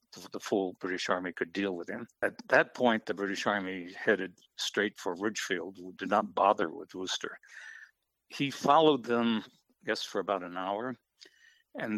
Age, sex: 60-79, male